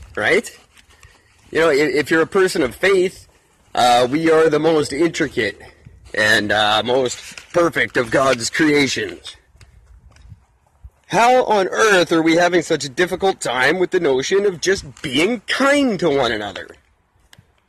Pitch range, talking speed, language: 150-225 Hz, 145 wpm, English